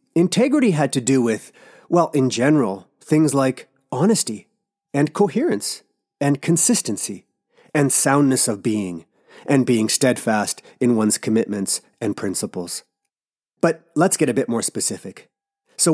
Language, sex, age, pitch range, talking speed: English, male, 30-49, 120-165 Hz, 130 wpm